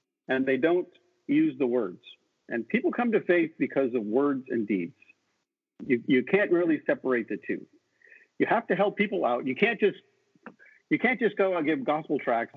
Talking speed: 180 wpm